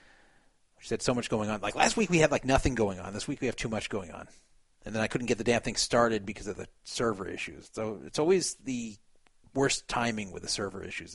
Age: 30-49